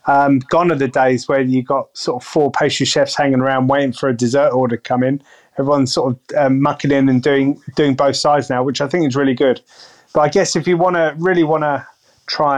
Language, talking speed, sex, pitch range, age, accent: English, 250 wpm, male, 135-160 Hz, 30-49, British